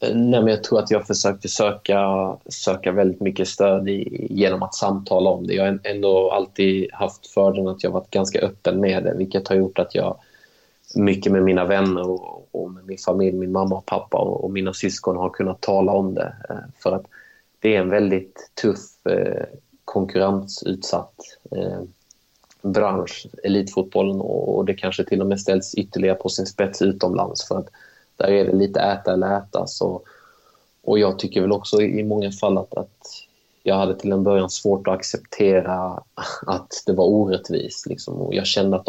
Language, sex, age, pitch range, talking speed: Swedish, male, 20-39, 95-100 Hz, 185 wpm